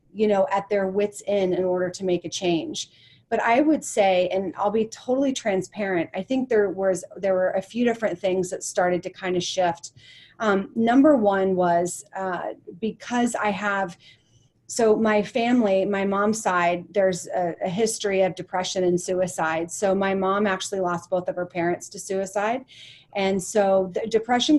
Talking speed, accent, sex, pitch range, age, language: 175 wpm, American, female, 185-220 Hz, 30-49, English